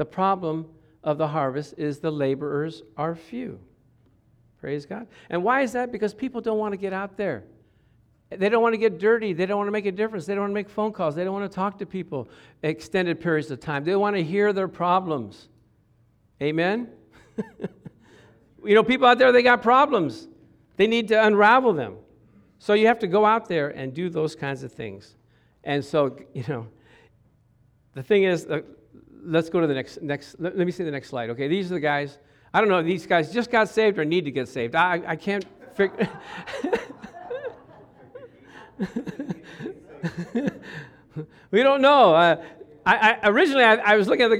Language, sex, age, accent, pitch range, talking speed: English, male, 50-69, American, 145-220 Hz, 195 wpm